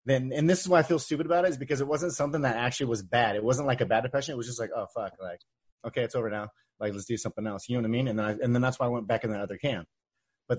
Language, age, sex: English, 30-49, male